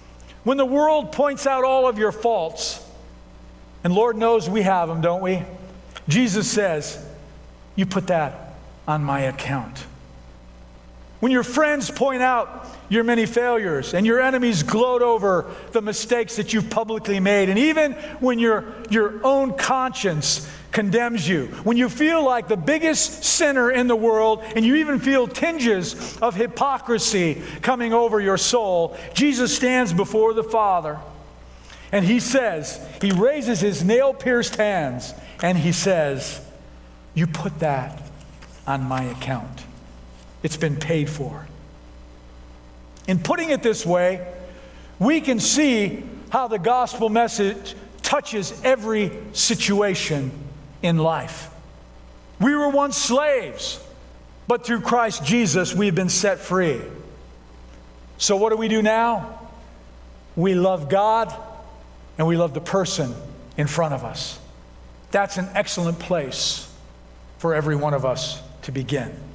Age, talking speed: 50-69, 135 wpm